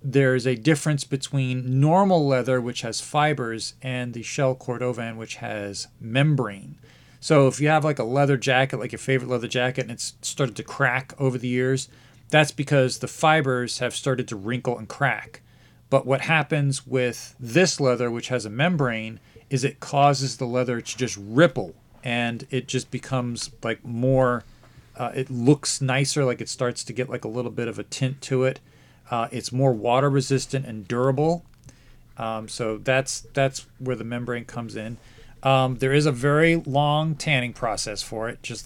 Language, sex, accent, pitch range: English, male, American, 120-135 Hz